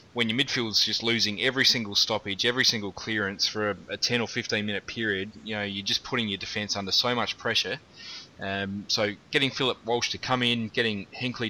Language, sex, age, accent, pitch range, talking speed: English, male, 20-39, Australian, 105-120 Hz, 210 wpm